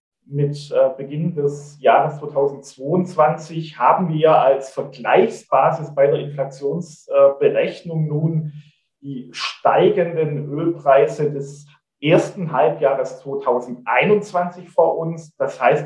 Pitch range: 140-180 Hz